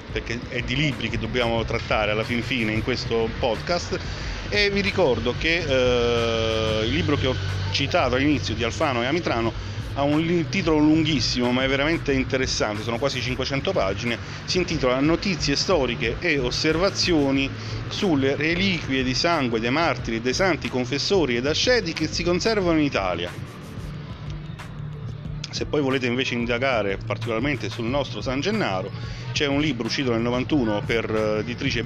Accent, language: native, Italian